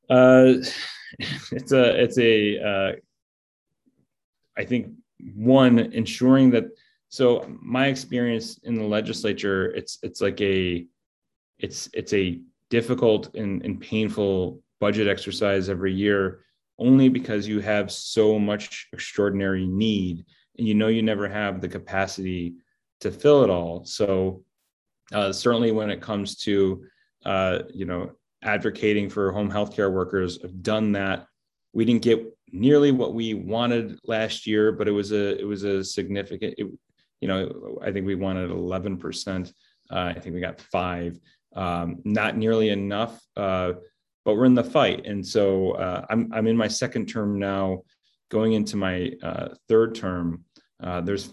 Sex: male